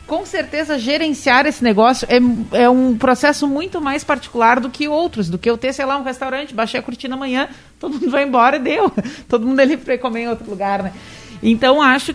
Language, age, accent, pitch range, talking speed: Portuguese, 40-59, Brazilian, 220-275 Hz, 215 wpm